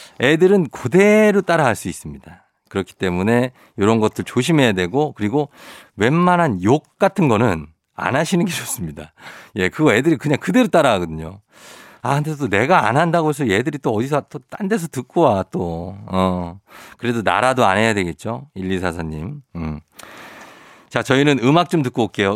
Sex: male